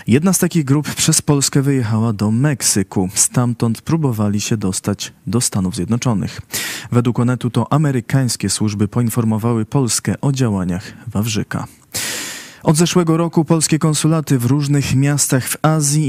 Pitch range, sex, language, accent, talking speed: 110-140 Hz, male, Polish, native, 135 wpm